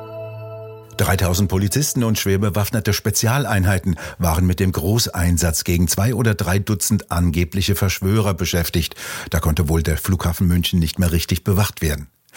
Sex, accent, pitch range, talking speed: male, German, 90-110 Hz, 135 wpm